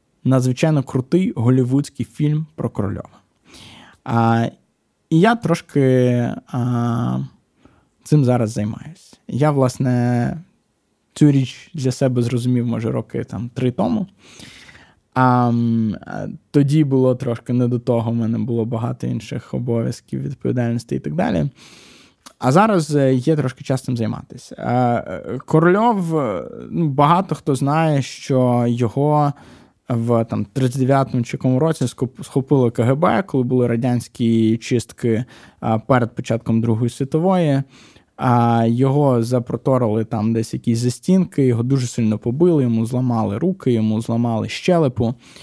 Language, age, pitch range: Ukrainian, 20-39, 115-140 Hz